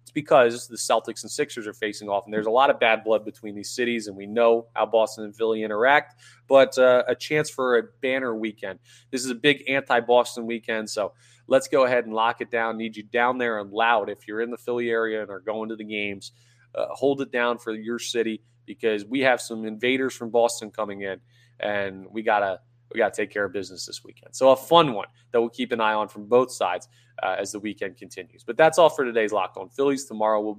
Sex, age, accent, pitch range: male, 20-39, American, 110-125 Hz